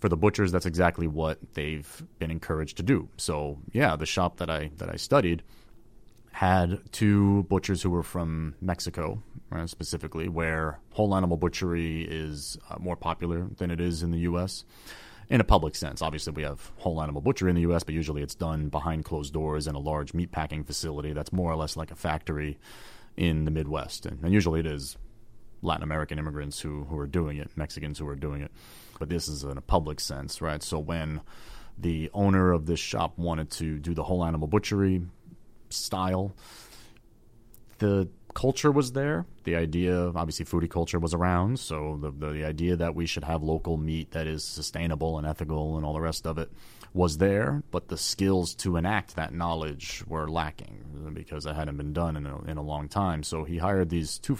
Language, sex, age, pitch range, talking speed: English, male, 30-49, 75-95 Hz, 195 wpm